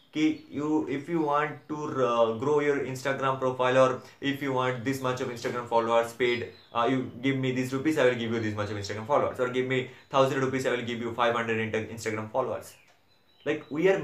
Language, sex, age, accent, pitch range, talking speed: English, male, 20-39, Indian, 115-145 Hz, 205 wpm